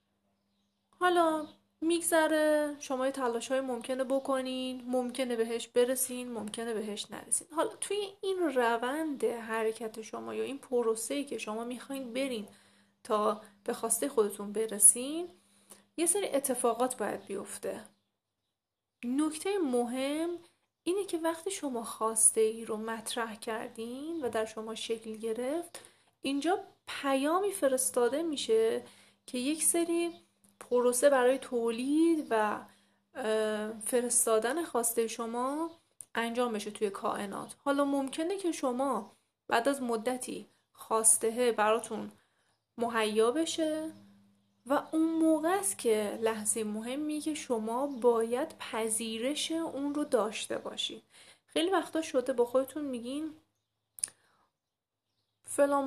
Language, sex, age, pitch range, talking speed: Persian, female, 30-49, 225-295 Hz, 110 wpm